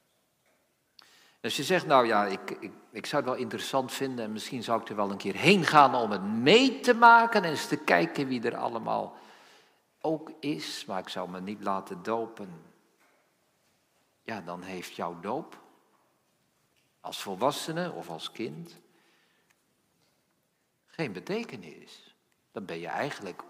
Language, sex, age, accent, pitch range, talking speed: Dutch, male, 50-69, Dutch, 120-200 Hz, 150 wpm